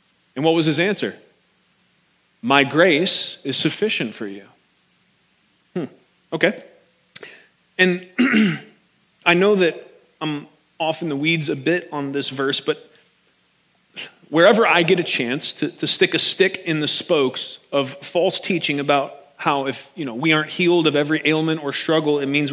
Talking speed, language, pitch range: 155 wpm, English, 145-190 Hz